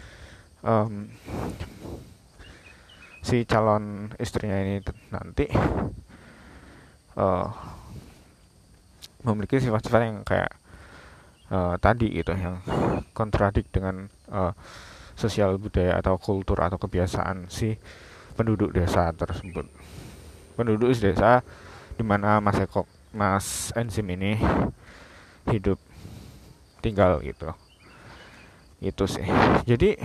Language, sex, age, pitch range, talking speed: Indonesian, male, 20-39, 90-115 Hz, 90 wpm